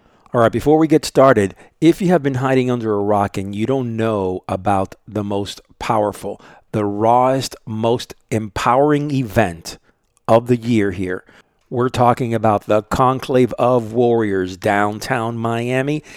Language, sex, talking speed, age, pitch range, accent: English, male, 150 wpm, 50-69, 105-130 Hz, American